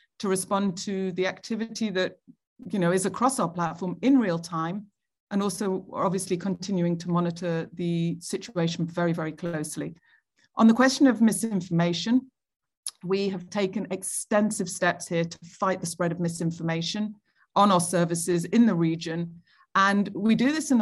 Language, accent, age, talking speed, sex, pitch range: English, British, 40-59, 155 wpm, female, 175-215 Hz